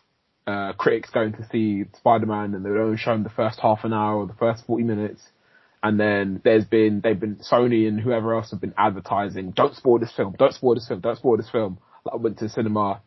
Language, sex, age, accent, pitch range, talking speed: English, male, 20-39, British, 100-125 Hz, 240 wpm